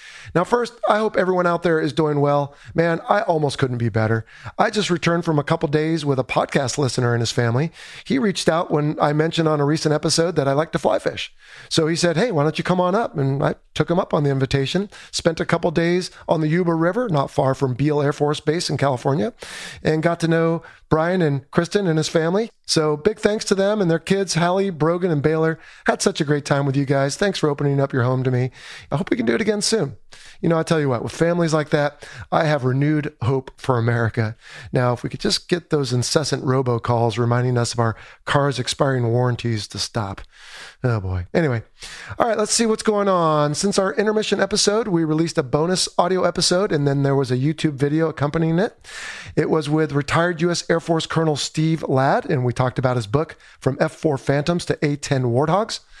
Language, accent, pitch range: English, American, 140-175 Hz